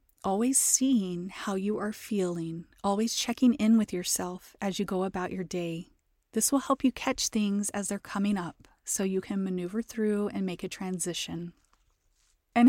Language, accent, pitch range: English, American, 190-235 Hz